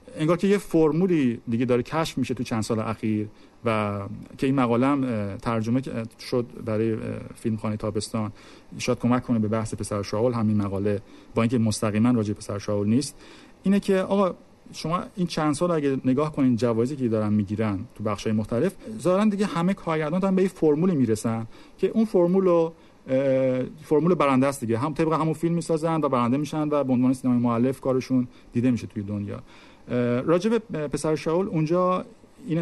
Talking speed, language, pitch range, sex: 175 wpm, Persian, 115-165 Hz, male